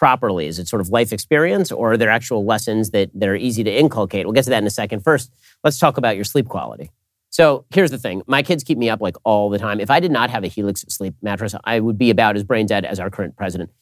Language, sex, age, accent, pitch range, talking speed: English, male, 40-59, American, 105-150 Hz, 280 wpm